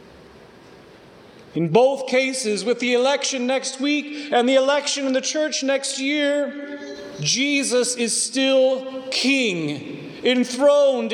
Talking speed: 115 wpm